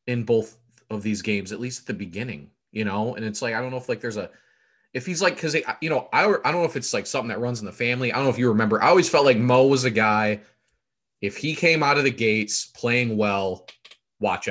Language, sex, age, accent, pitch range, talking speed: English, male, 20-39, American, 110-135 Hz, 270 wpm